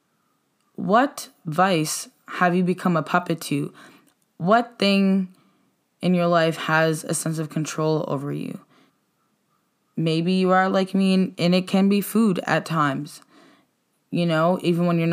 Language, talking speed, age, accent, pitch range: English, 145 wpm, 10-29, American, 155-185 Hz